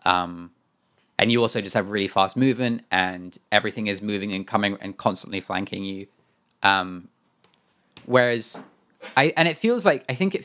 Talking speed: 165 wpm